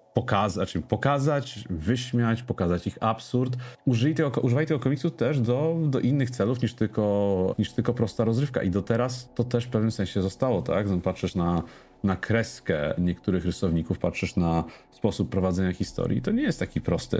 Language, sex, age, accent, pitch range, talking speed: Polish, male, 40-59, native, 95-120 Hz, 155 wpm